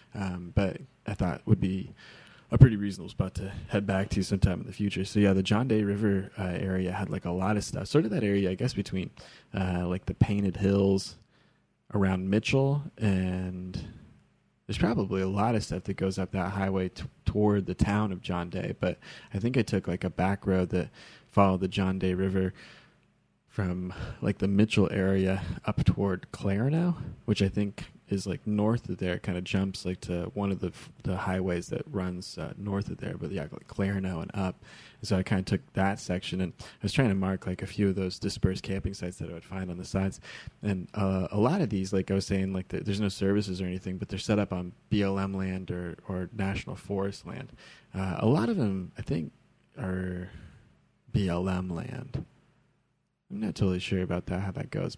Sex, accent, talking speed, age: male, American, 215 wpm, 20-39